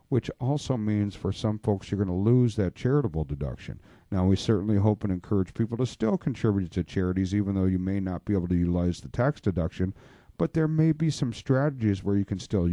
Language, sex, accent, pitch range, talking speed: English, male, American, 100-135 Hz, 220 wpm